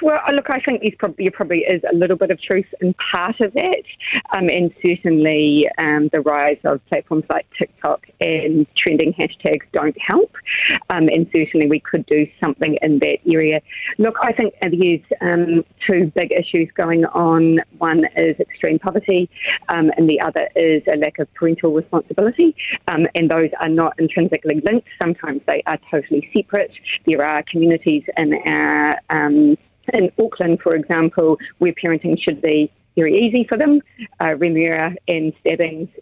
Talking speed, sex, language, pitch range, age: 165 wpm, female, English, 160-200 Hz, 30-49